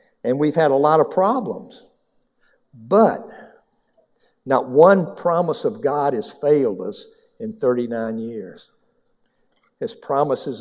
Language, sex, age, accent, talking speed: English, male, 60-79, American, 120 wpm